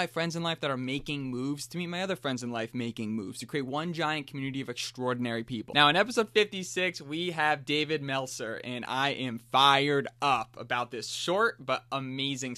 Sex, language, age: male, English, 20-39